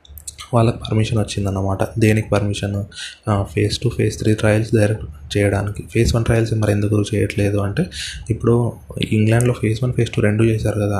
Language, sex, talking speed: Telugu, male, 155 wpm